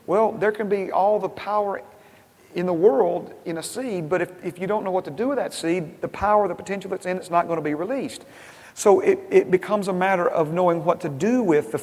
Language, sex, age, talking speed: English, male, 40-59, 255 wpm